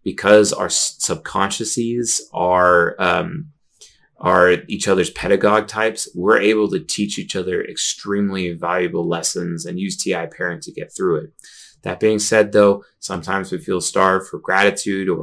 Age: 30-49